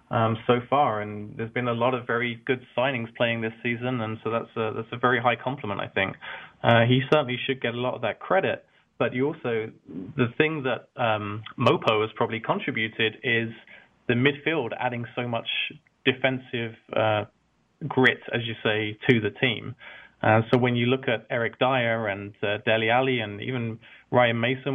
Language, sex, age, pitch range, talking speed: English, male, 20-39, 115-135 Hz, 190 wpm